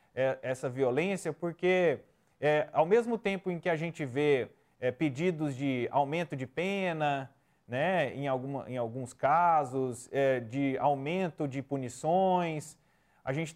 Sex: male